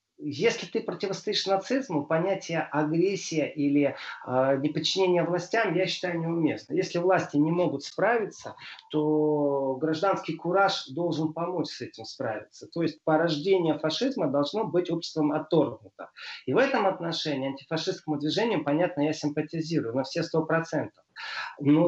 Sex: male